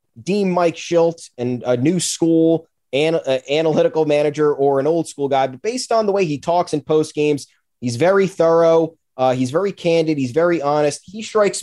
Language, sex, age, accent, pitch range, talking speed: English, male, 20-39, American, 130-170 Hz, 195 wpm